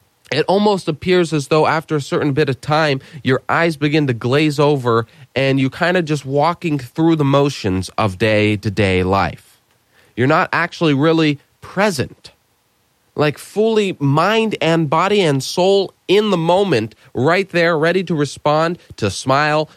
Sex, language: male, English